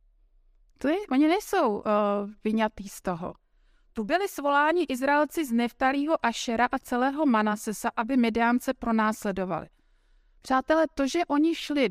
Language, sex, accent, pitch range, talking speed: Czech, female, native, 220-285 Hz, 120 wpm